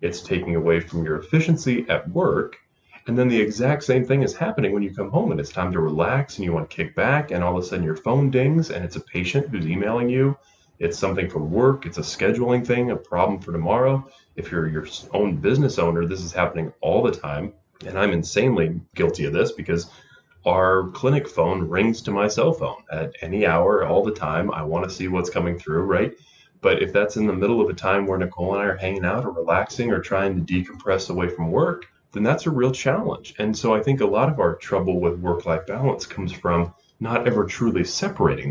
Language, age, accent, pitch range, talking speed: English, 20-39, American, 85-120 Hz, 230 wpm